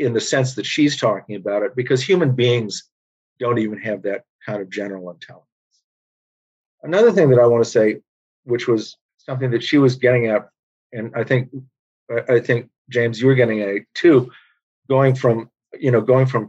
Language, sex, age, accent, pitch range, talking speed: English, male, 50-69, American, 110-135 Hz, 190 wpm